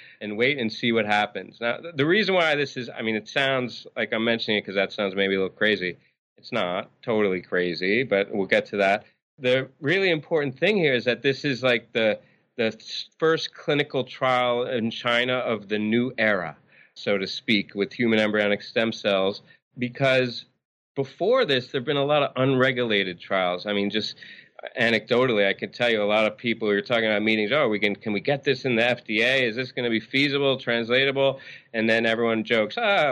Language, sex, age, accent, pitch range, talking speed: English, male, 30-49, American, 105-130 Hz, 205 wpm